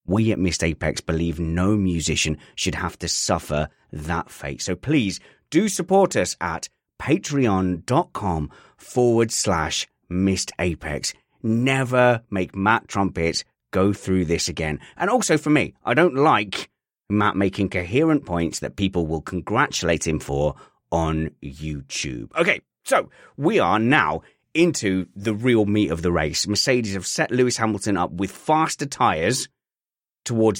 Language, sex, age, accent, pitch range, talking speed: English, male, 30-49, British, 90-125 Hz, 145 wpm